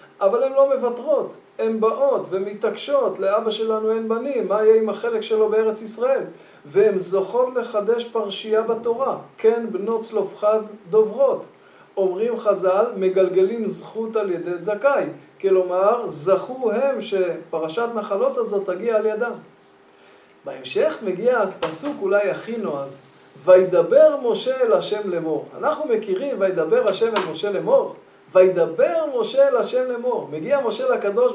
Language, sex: Hebrew, male